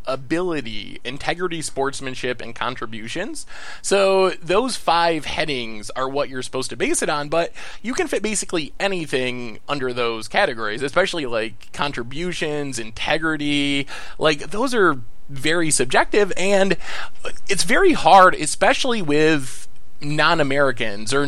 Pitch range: 125-165 Hz